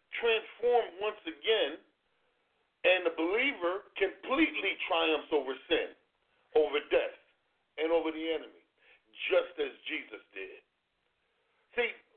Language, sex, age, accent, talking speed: English, male, 40-59, American, 105 wpm